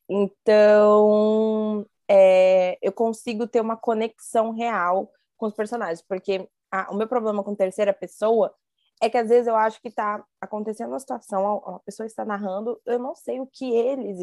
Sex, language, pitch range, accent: female, Portuguese, 190-225 Hz, Brazilian